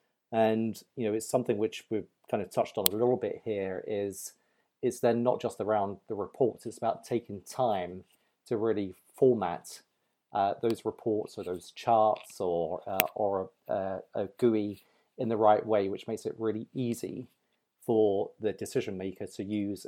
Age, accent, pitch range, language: 40-59, British, 95-110 Hz, English